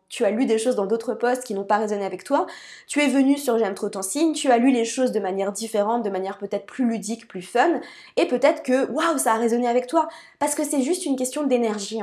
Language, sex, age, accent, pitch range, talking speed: French, female, 20-39, French, 205-255 Hz, 265 wpm